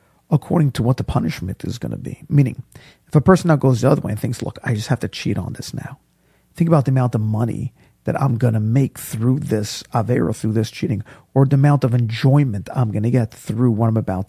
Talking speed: 250 wpm